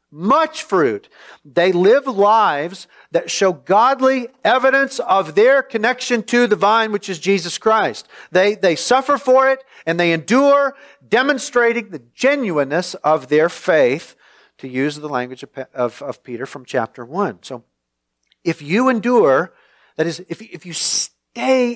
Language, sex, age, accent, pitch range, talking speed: English, male, 40-59, American, 145-240 Hz, 150 wpm